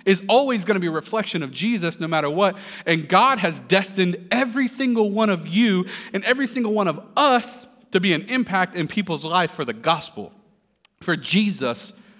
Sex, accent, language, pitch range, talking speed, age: male, American, English, 165-215 Hz, 190 wpm, 40-59